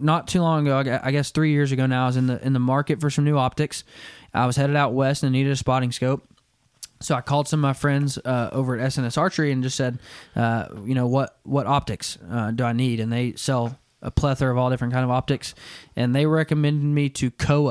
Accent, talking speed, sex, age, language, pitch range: American, 245 wpm, male, 20-39, English, 125-150 Hz